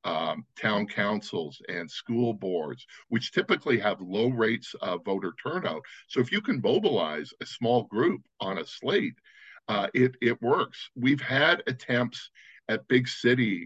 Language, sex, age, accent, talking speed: English, male, 50-69, American, 155 wpm